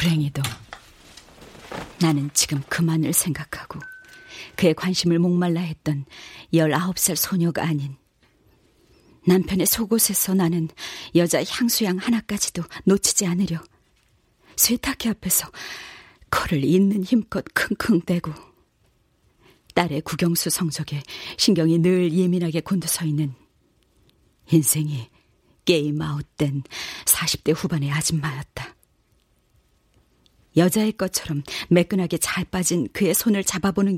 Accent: native